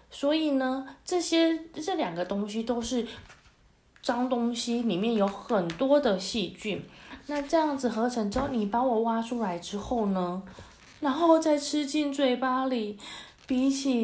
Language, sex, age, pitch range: Chinese, female, 20-39, 200-260 Hz